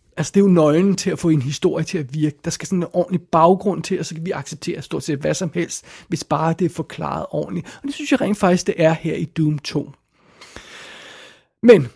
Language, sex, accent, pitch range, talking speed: Danish, male, native, 150-180 Hz, 250 wpm